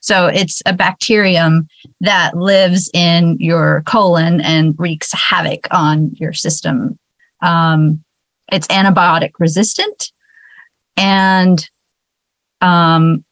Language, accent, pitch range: English, American, 160-185 Hz